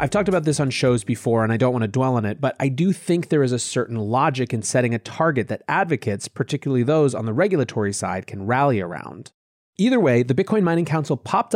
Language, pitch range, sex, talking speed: English, 115-170 Hz, male, 240 wpm